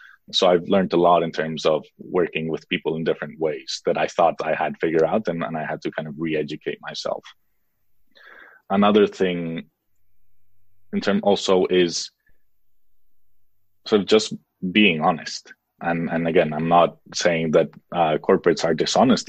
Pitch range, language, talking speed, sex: 85-100 Hz, English, 160 wpm, male